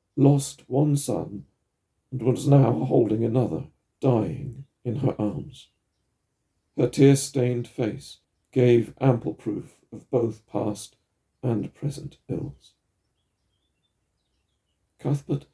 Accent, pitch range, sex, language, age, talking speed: British, 100-130 Hz, male, English, 50-69, 95 wpm